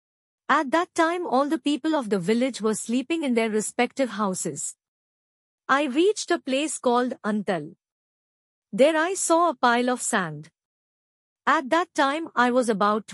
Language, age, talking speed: Hindi, 50-69, 155 wpm